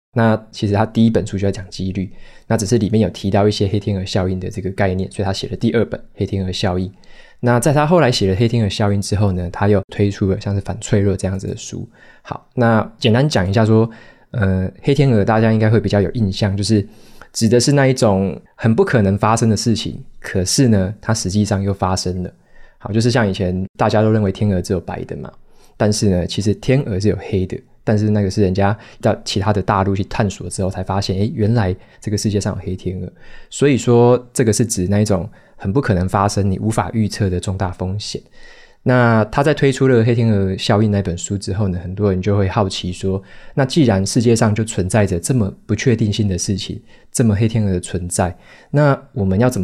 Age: 20-39